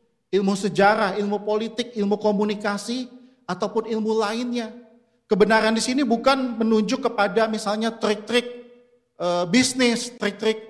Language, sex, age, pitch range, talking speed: Indonesian, male, 40-59, 170-220 Hz, 110 wpm